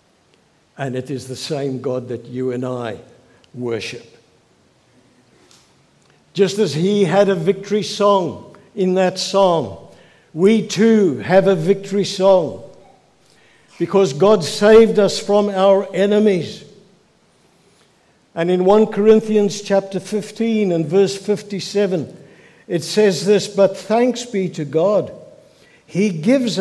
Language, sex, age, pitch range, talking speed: English, male, 60-79, 150-210 Hz, 120 wpm